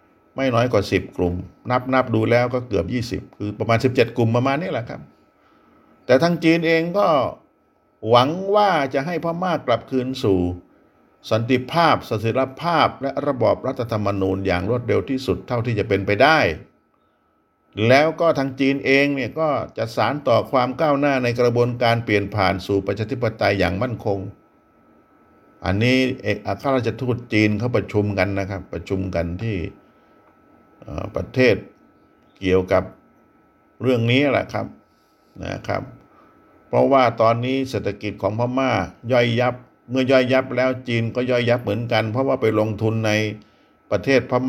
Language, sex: Thai, male